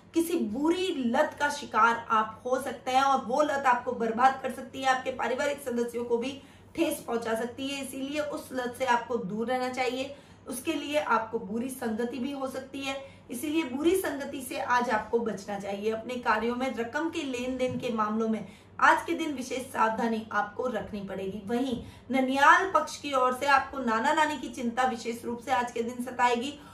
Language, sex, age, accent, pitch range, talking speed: Hindi, female, 20-39, native, 235-275 Hz, 140 wpm